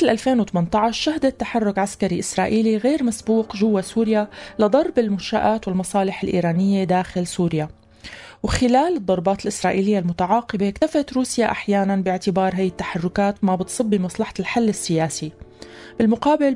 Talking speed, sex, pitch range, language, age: 110 wpm, female, 185-230 Hz, Arabic, 30-49